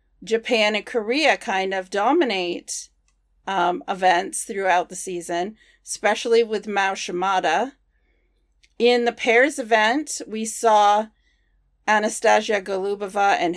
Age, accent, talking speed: 40-59, American, 105 wpm